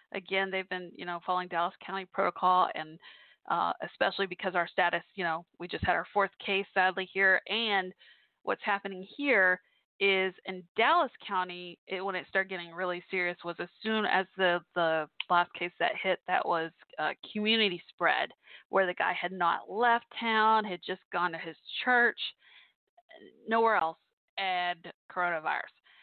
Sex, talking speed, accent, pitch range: female, 165 wpm, American, 175-210 Hz